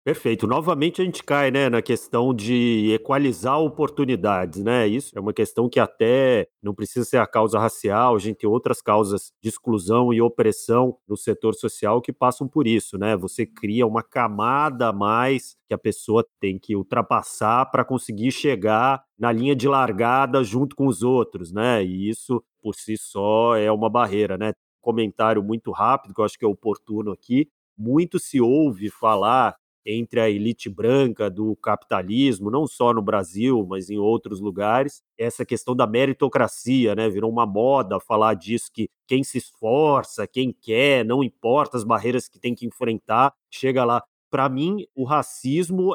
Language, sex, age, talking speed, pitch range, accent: Portuguese, male, 40-59, 170 wpm, 110-140 Hz, Brazilian